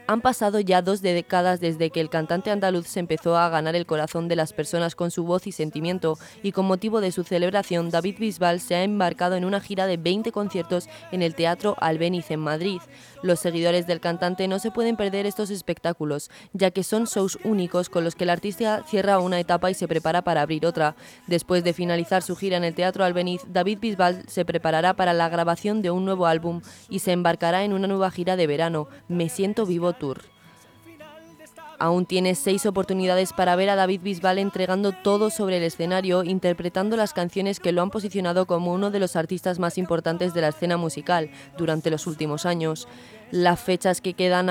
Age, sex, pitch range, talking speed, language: 20-39, female, 170-195 Hz, 200 wpm, Spanish